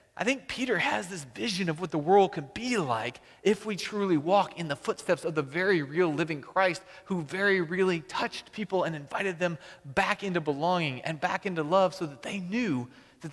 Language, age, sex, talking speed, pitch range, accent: English, 30-49, male, 205 wpm, 130-180 Hz, American